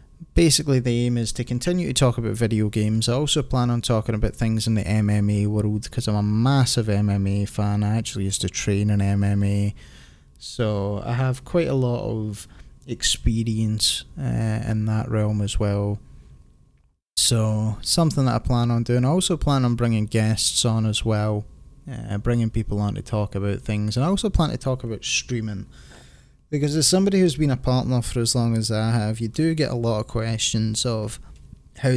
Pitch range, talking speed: 105-120 Hz, 195 wpm